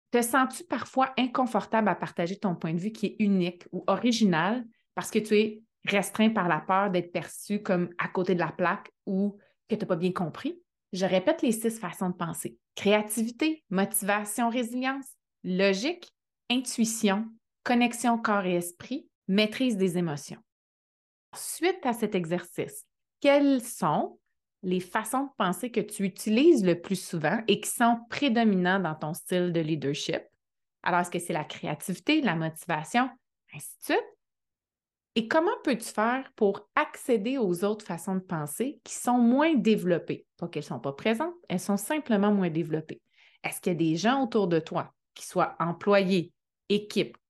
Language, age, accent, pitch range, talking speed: French, 30-49, Canadian, 180-235 Hz, 165 wpm